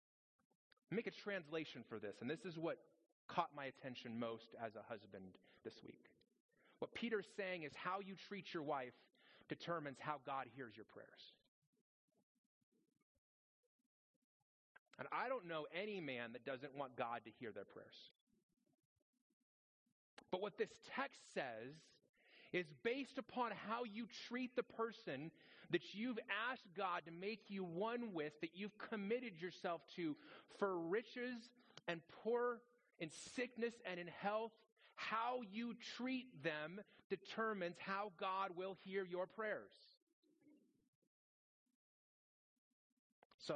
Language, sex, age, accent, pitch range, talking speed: English, male, 30-49, American, 155-235 Hz, 130 wpm